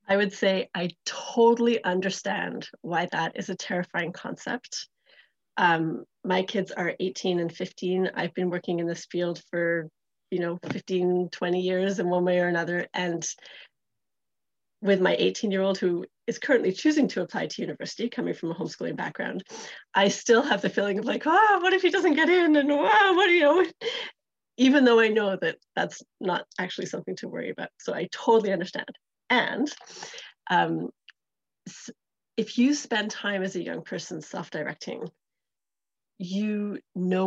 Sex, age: female, 30-49